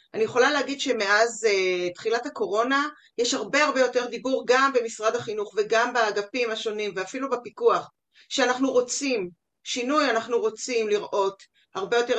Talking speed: 135 wpm